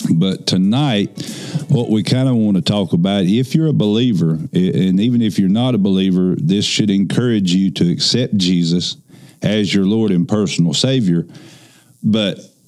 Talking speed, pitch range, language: 165 wpm, 90-105 Hz, English